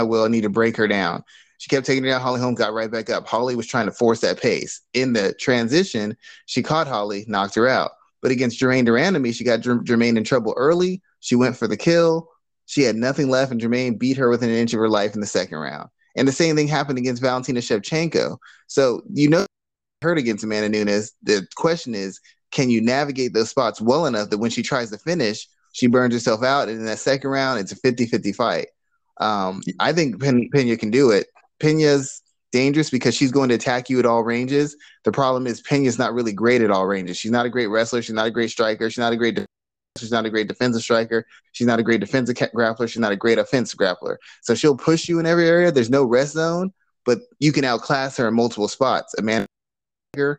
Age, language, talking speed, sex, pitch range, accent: 20-39, English, 230 wpm, male, 115-140 Hz, American